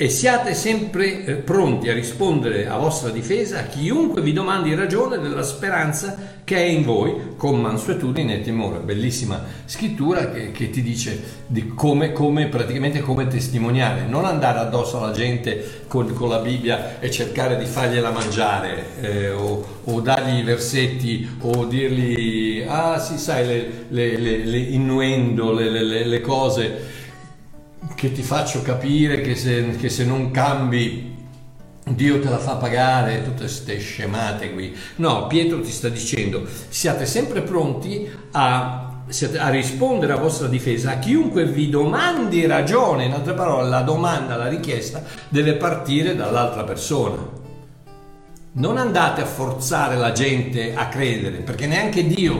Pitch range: 120-160 Hz